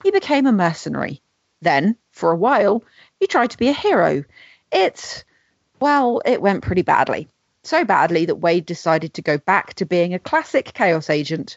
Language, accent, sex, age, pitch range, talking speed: English, British, female, 30-49, 165-220 Hz, 175 wpm